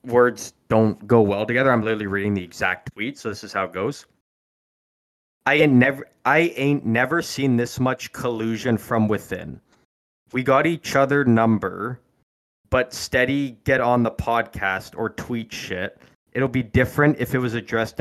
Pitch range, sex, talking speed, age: 105-130 Hz, male, 165 wpm, 20-39